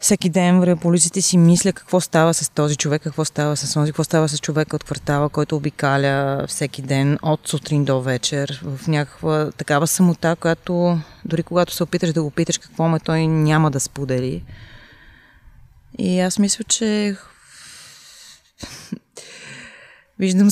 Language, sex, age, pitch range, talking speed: Bulgarian, female, 20-39, 145-185 Hz, 150 wpm